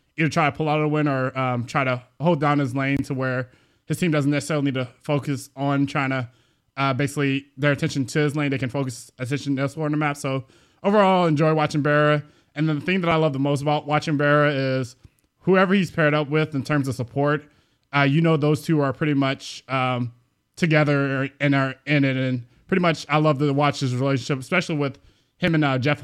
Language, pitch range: English, 135-150 Hz